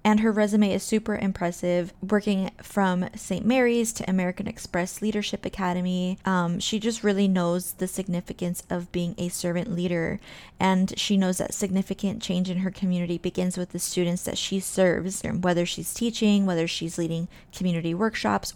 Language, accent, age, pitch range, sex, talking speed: English, American, 20-39, 180-205 Hz, female, 165 wpm